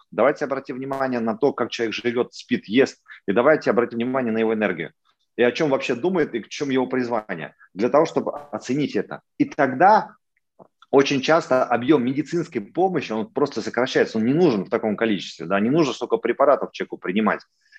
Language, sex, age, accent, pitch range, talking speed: Russian, male, 30-49, native, 115-145 Hz, 185 wpm